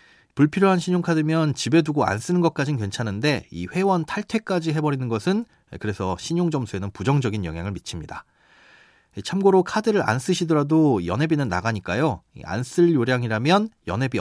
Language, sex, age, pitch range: Korean, male, 30-49, 110-175 Hz